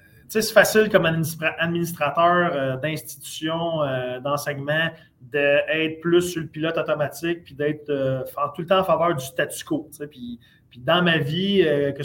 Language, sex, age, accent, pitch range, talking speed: French, male, 30-49, Canadian, 145-180 Hz, 150 wpm